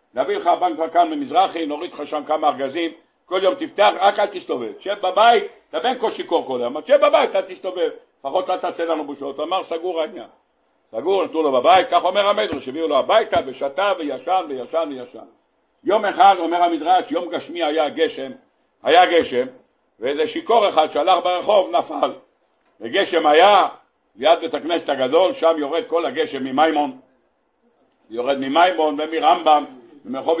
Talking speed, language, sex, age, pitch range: 160 wpm, Hebrew, male, 60-79, 135-180 Hz